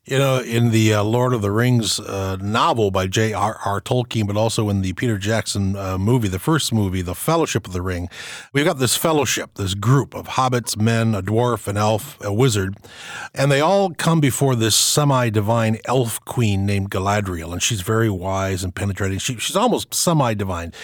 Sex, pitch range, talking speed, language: male, 100-140 Hz, 195 wpm, English